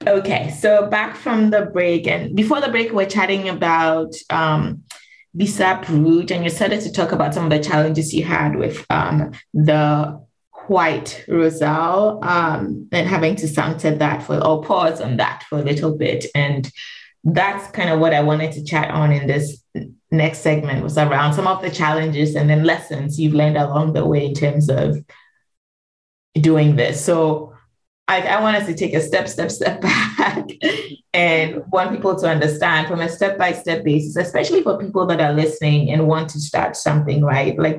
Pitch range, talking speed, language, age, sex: 150-170 Hz, 185 wpm, English, 20-39, female